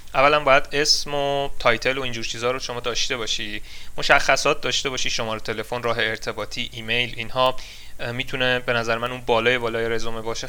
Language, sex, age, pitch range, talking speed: Persian, male, 30-49, 115-150 Hz, 170 wpm